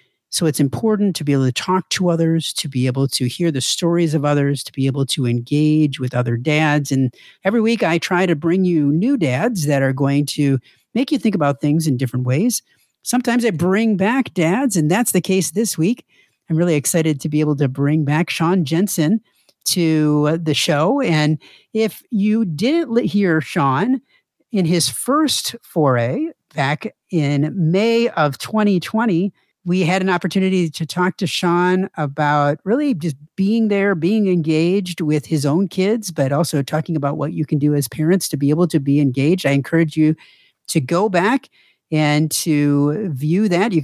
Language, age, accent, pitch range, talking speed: English, 50-69, American, 145-200 Hz, 185 wpm